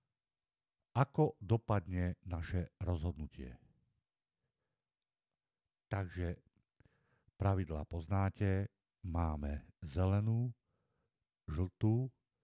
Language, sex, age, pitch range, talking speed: Slovak, male, 50-69, 85-110 Hz, 50 wpm